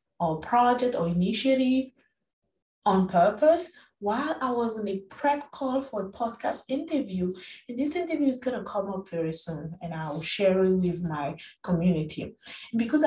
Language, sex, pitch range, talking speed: English, female, 190-270 Hz, 160 wpm